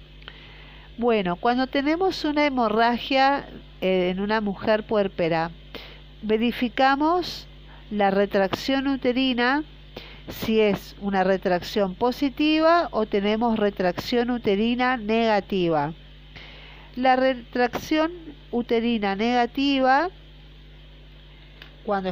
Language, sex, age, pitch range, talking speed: Spanish, female, 40-59, 195-260 Hz, 75 wpm